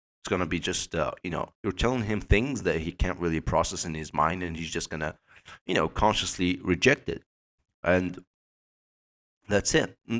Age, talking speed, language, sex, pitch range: 30-49, 195 wpm, English, male, 85-105 Hz